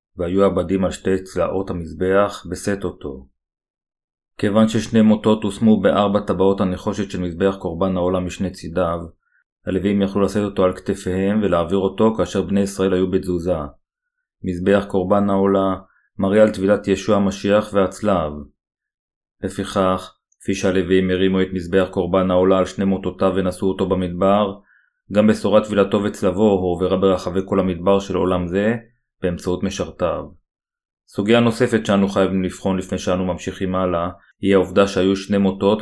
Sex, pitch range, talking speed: male, 95-105 Hz, 140 wpm